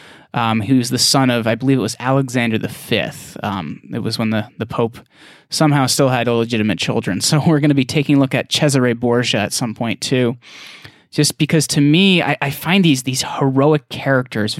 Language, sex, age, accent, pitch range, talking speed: English, male, 20-39, American, 115-150 Hz, 200 wpm